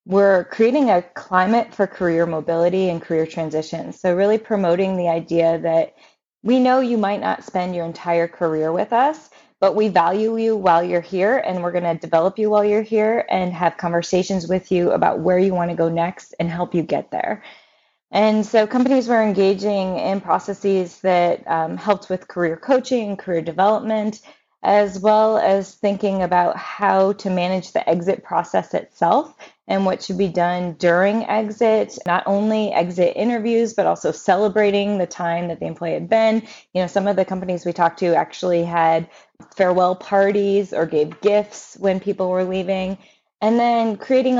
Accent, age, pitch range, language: American, 20-39, 175-210 Hz, English